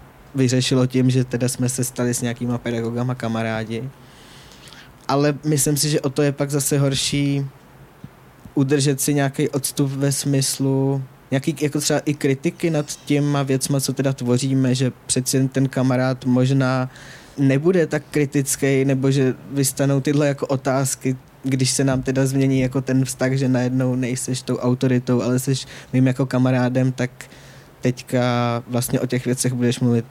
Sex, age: male, 20-39